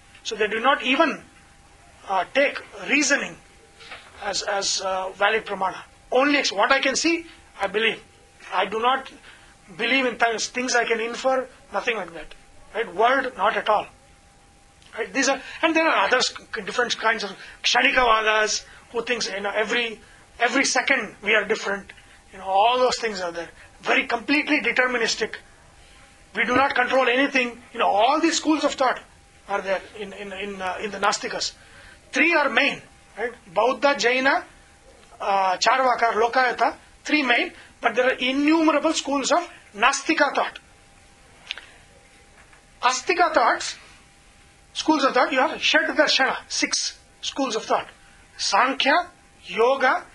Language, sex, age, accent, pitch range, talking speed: English, male, 30-49, Indian, 215-275 Hz, 145 wpm